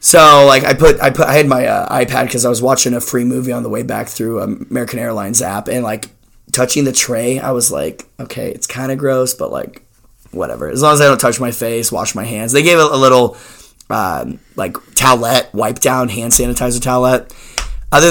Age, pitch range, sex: 20-39, 120-135 Hz, male